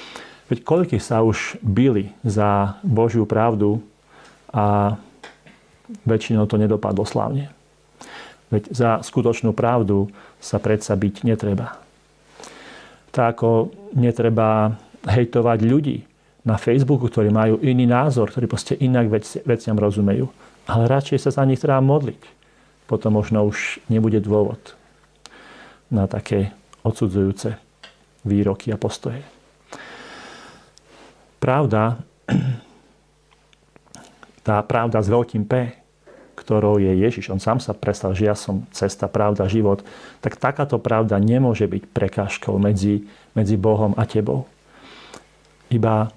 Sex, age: male, 40-59